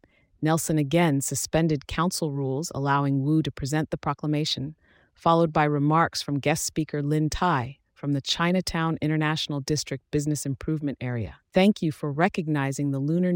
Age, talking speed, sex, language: 30-49, 150 wpm, female, English